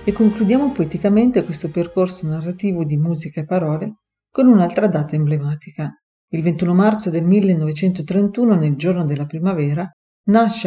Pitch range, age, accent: 155-200 Hz, 40-59, native